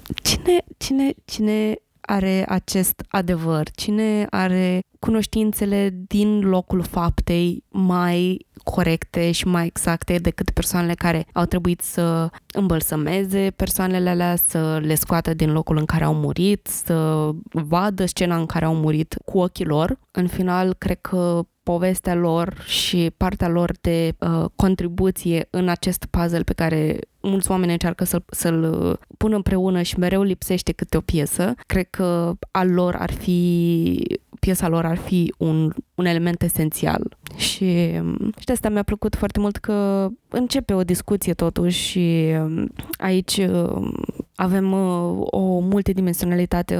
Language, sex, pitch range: Romanian, female, 170-190 Hz